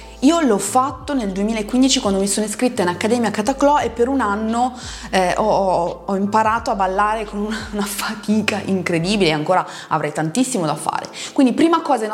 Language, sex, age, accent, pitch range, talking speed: Italian, female, 20-39, native, 180-245 Hz, 180 wpm